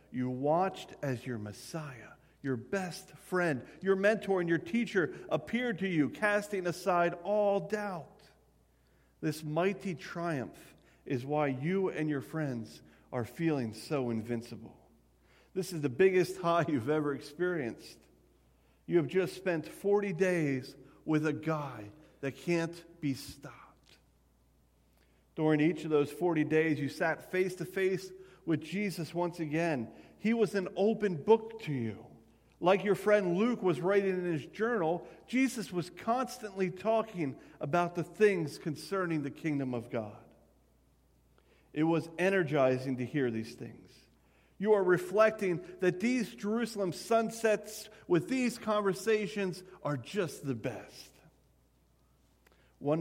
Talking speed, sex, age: 130 wpm, male, 50-69